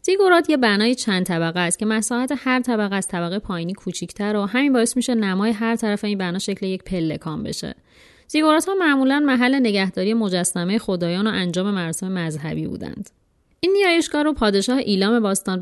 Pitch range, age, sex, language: 180-230 Hz, 30-49, female, Persian